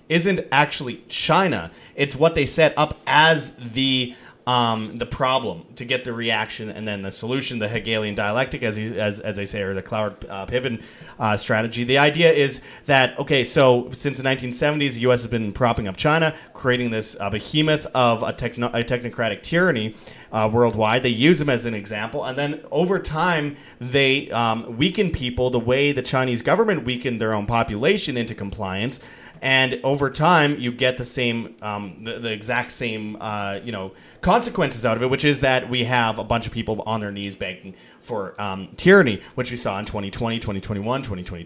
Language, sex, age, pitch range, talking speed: English, male, 30-49, 110-145 Hz, 190 wpm